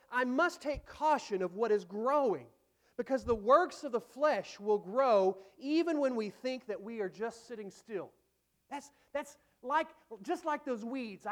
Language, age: English, 40-59